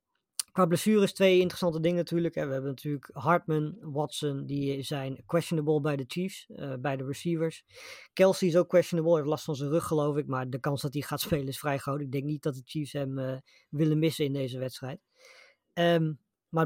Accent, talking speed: Dutch, 210 wpm